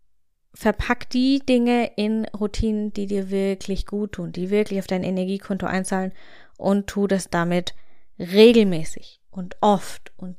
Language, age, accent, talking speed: German, 20-39, German, 140 wpm